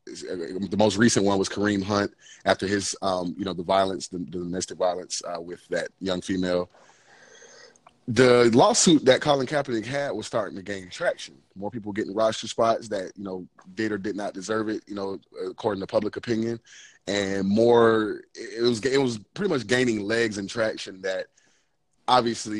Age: 30-49